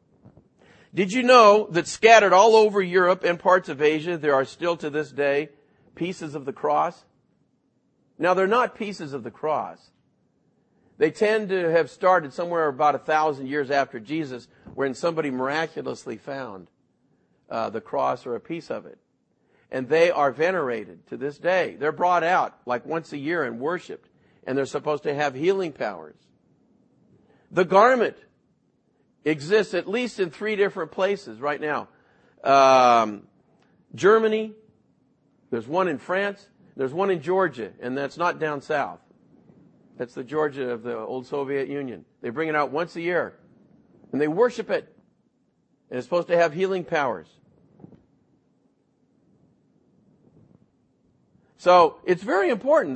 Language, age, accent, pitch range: English, 50-69, American, 145-195 Hz